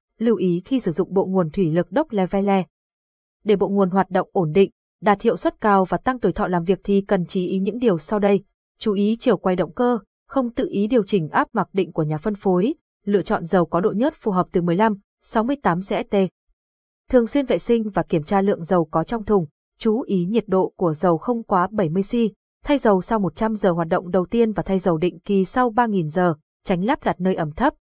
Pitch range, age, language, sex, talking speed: 180-230 Hz, 20-39, Vietnamese, female, 235 wpm